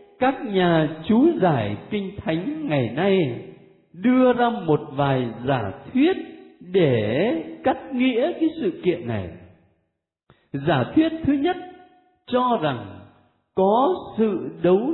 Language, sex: Vietnamese, male